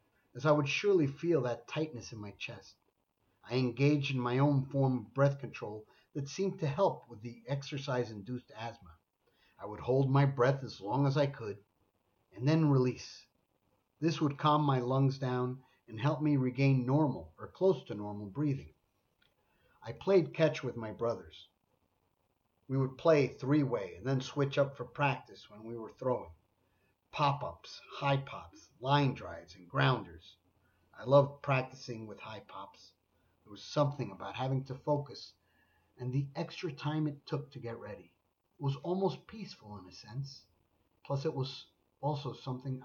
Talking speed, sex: 165 wpm, male